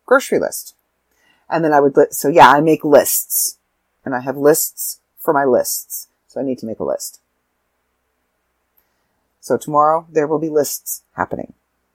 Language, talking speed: English, 165 wpm